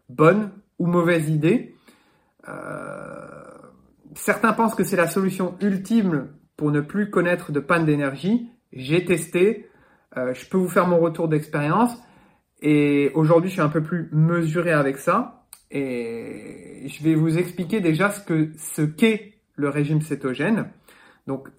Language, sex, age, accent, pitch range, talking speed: French, male, 30-49, French, 150-190 Hz, 145 wpm